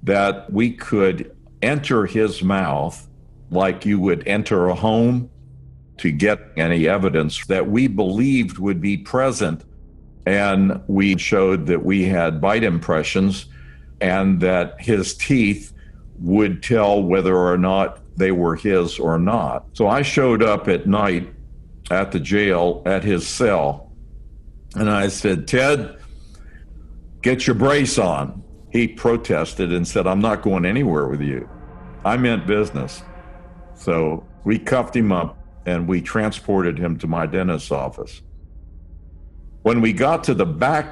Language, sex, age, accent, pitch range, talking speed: English, male, 60-79, American, 80-105 Hz, 140 wpm